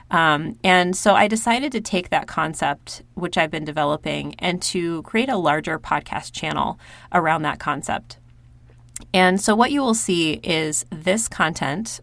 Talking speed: 160 wpm